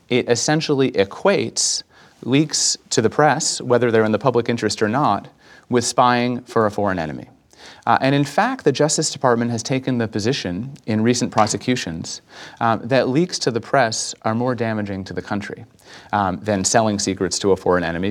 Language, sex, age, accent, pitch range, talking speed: English, male, 30-49, American, 105-130 Hz, 180 wpm